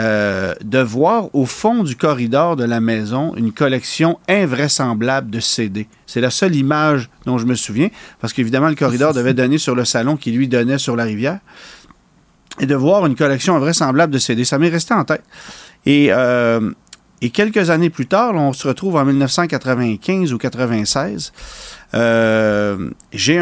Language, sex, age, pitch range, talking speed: French, male, 40-59, 115-145 Hz, 175 wpm